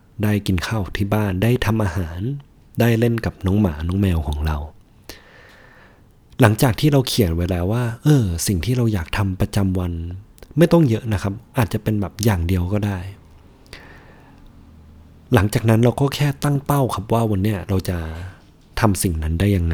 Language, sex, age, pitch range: Thai, male, 20-39, 90-110 Hz